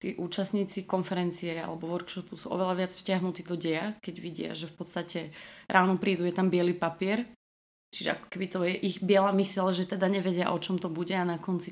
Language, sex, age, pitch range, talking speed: Slovak, female, 30-49, 170-195 Hz, 200 wpm